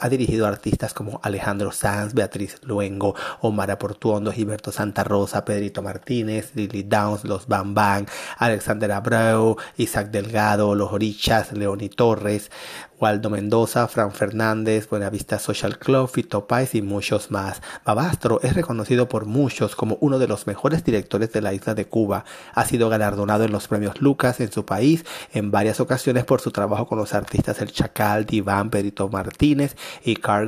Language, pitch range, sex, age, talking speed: Spanish, 105-120 Hz, male, 30-49, 160 wpm